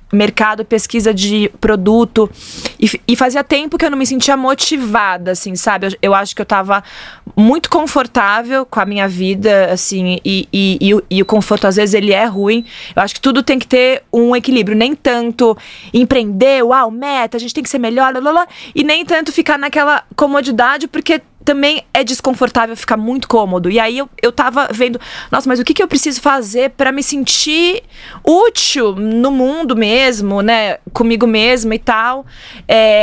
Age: 20-39